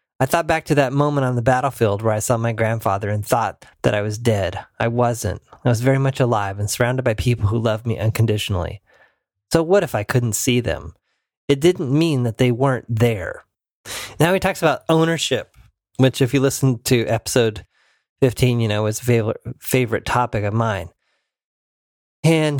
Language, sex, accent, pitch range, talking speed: English, male, American, 110-140 Hz, 185 wpm